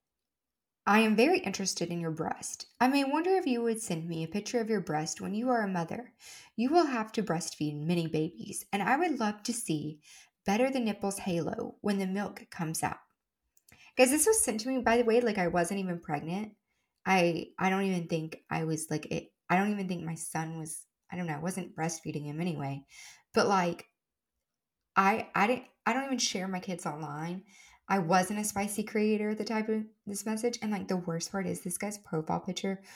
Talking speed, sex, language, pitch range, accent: 215 wpm, female, English, 165-220 Hz, American